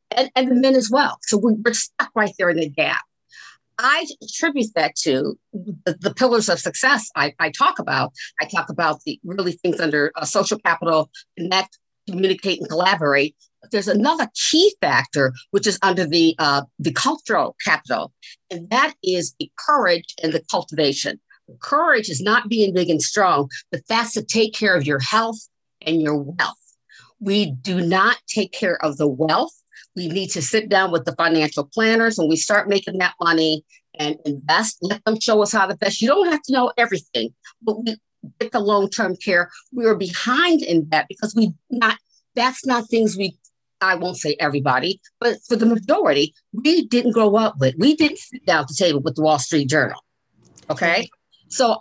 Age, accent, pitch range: 50-69, American, 165-235 Hz